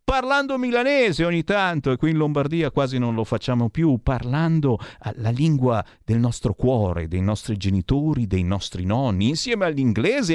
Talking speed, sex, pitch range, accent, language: 155 wpm, male, 105-150 Hz, native, Italian